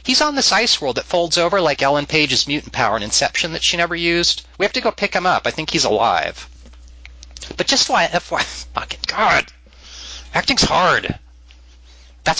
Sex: male